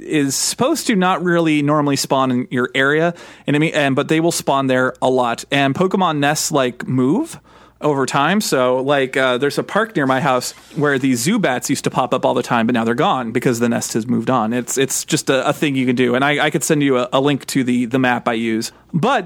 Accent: American